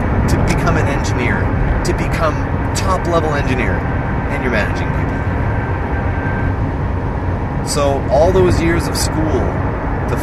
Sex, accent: male, American